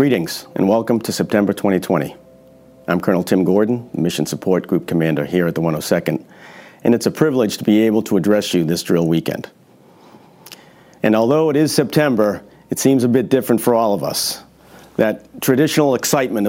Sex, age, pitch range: male, 50-69, 90-120 Hz